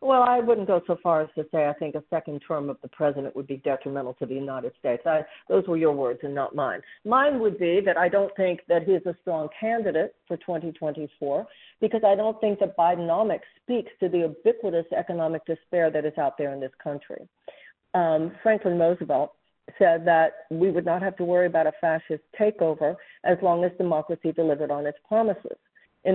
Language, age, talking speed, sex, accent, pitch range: English, 50-69, 205 wpm, female, American, 160-200 Hz